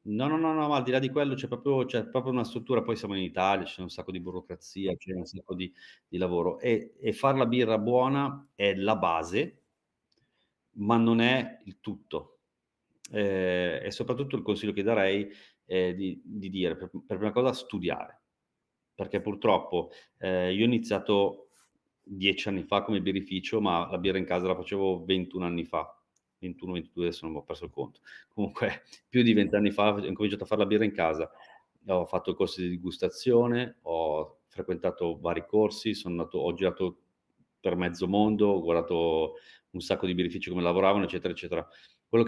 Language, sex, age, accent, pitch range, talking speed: Italian, male, 40-59, native, 90-115 Hz, 185 wpm